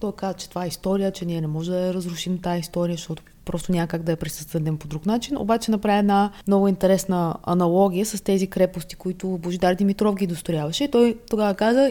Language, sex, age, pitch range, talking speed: Bulgarian, female, 20-39, 170-210 Hz, 200 wpm